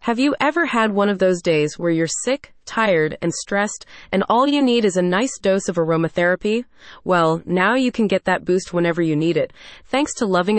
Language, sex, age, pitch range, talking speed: English, female, 30-49, 175-230 Hz, 215 wpm